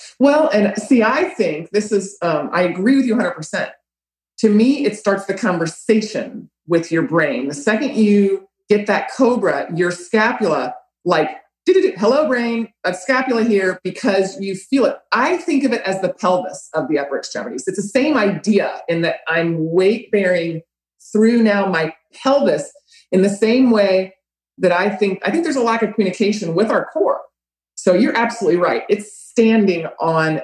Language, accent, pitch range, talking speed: English, American, 170-225 Hz, 175 wpm